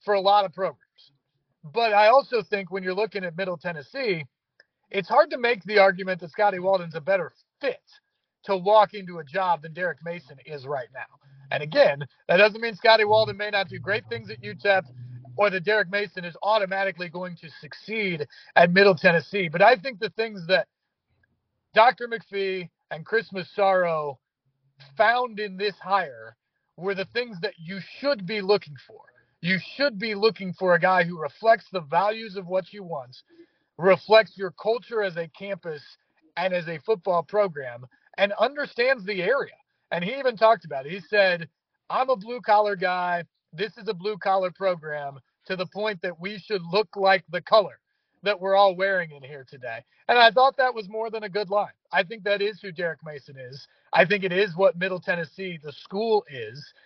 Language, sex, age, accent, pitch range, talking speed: English, male, 40-59, American, 170-210 Hz, 190 wpm